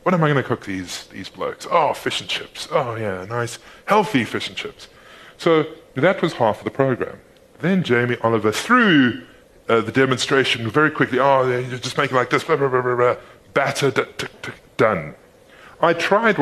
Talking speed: 170 wpm